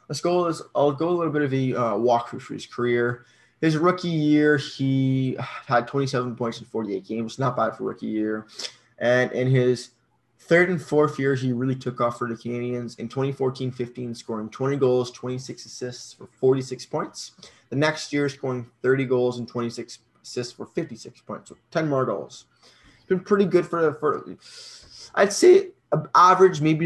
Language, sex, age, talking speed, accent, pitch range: English, male, 20-39, 180 wpm, American, 125-150 Hz